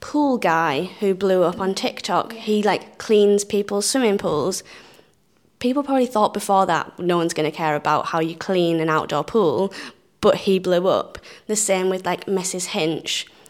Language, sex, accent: English, female, British